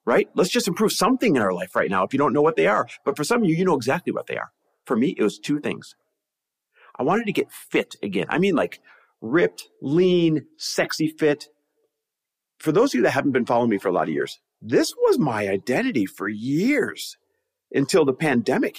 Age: 50-69